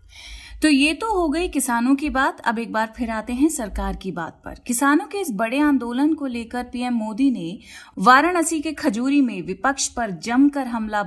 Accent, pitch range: native, 210-275 Hz